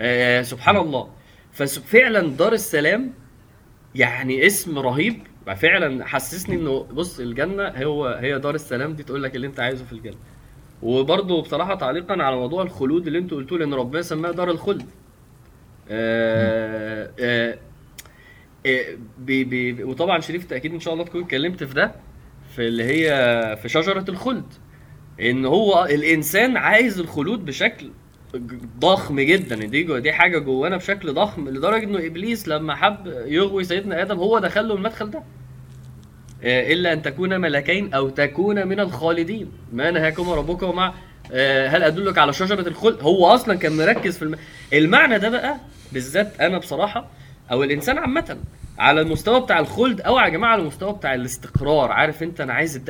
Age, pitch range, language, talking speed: 20-39, 130-175 Hz, Arabic, 155 wpm